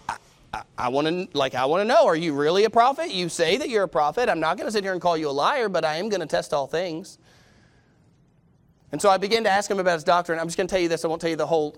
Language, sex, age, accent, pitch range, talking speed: English, male, 30-49, American, 185-290 Hz, 310 wpm